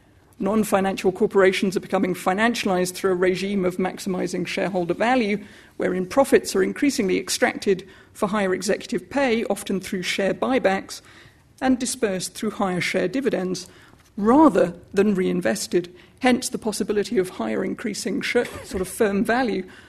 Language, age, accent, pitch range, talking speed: English, 50-69, British, 190-250 Hz, 135 wpm